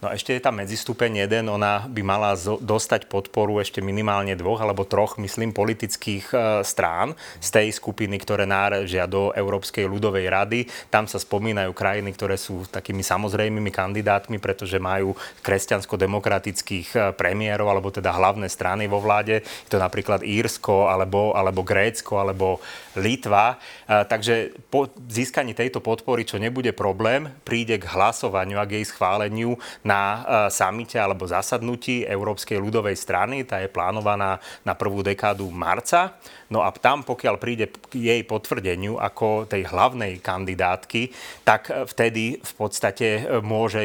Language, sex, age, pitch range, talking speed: Slovak, male, 30-49, 100-110 Hz, 140 wpm